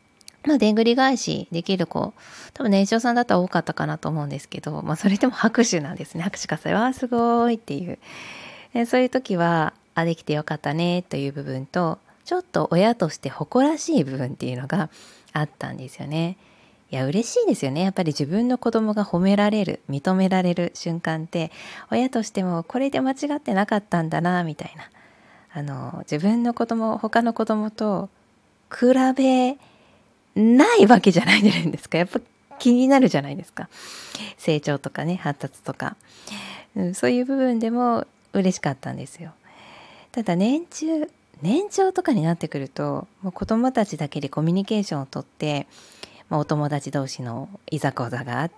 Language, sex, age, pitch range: Japanese, female, 20-39, 145-225 Hz